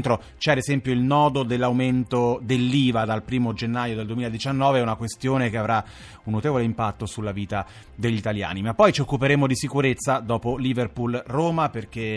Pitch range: 110-135 Hz